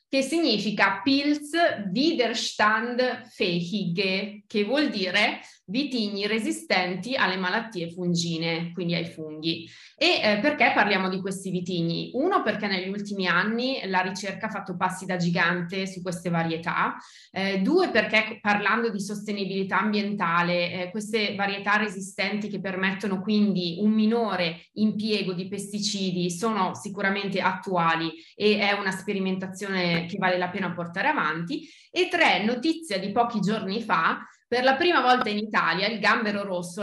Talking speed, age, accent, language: 140 wpm, 20-39, native, Italian